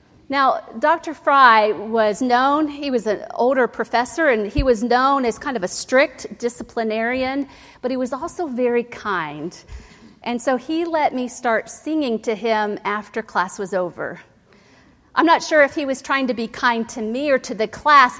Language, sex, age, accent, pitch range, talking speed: English, female, 50-69, American, 220-280 Hz, 180 wpm